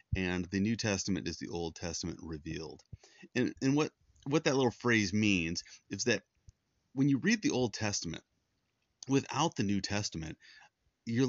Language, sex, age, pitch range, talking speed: English, male, 30-49, 95-120 Hz, 160 wpm